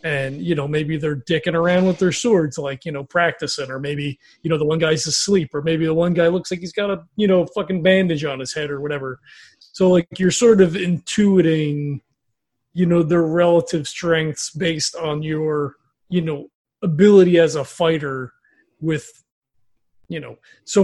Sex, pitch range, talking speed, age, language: male, 150-185 Hz, 185 wpm, 30-49, English